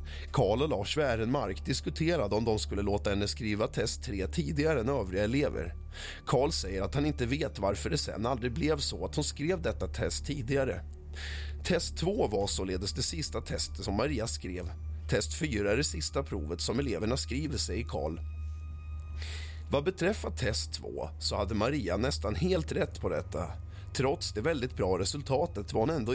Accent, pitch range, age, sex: native, 80-130 Hz, 30-49, male